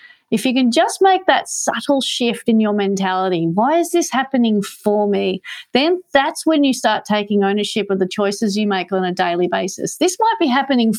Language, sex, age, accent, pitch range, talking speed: English, female, 40-59, Australian, 205-255 Hz, 200 wpm